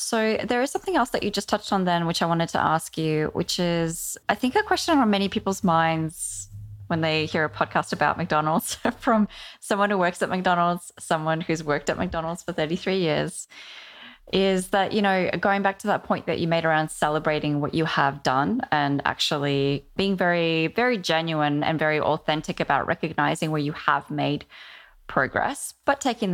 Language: English